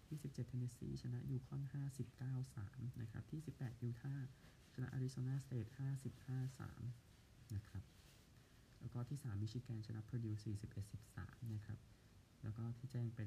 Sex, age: male, 20-39